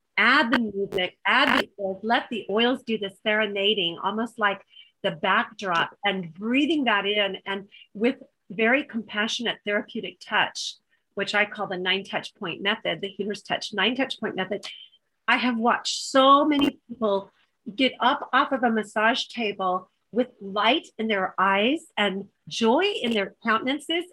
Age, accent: 40-59, American